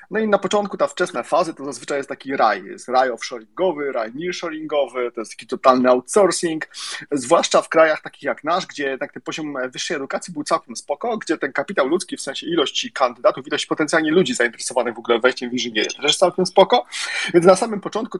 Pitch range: 130-185 Hz